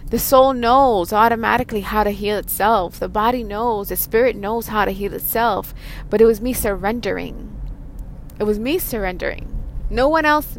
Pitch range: 175-220 Hz